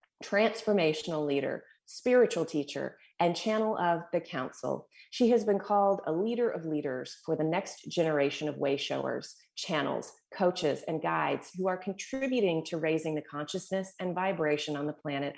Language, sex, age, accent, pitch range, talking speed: English, female, 30-49, American, 150-190 Hz, 155 wpm